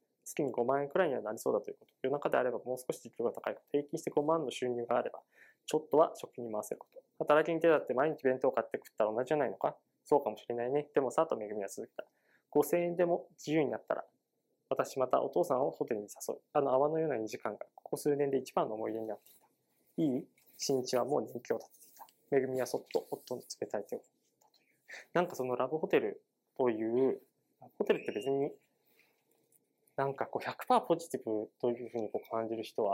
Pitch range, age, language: 125-175 Hz, 20-39, Japanese